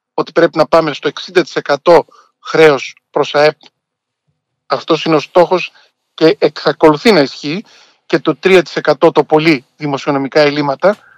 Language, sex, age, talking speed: Greek, male, 50-69, 130 wpm